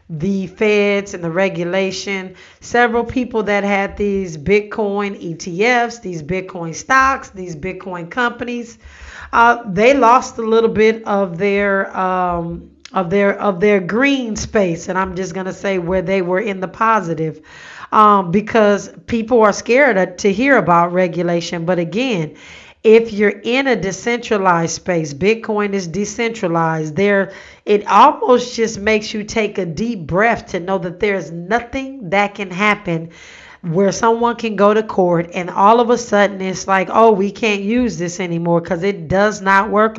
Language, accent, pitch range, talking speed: English, American, 185-225 Hz, 160 wpm